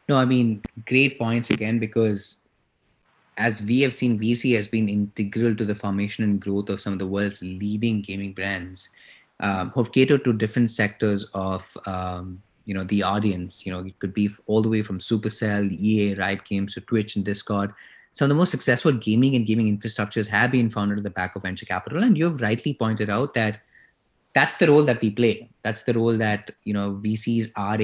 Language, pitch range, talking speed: English, 100-120 Hz, 210 wpm